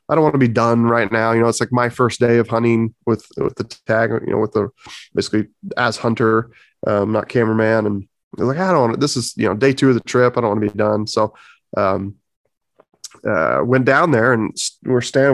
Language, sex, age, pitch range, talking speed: English, male, 20-39, 105-120 Hz, 245 wpm